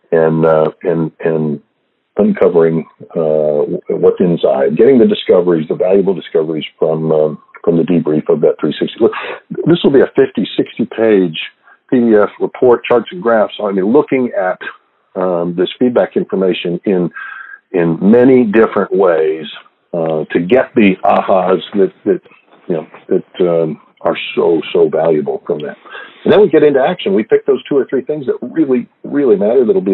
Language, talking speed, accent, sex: English, 170 wpm, American, male